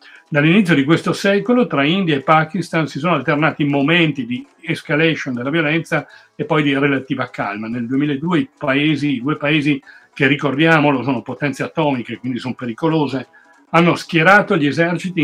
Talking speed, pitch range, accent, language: 155 wpm, 140-165 Hz, native, Italian